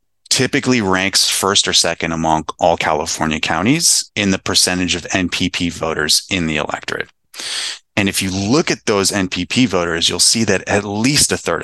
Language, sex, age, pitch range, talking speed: English, male, 30-49, 85-105 Hz, 170 wpm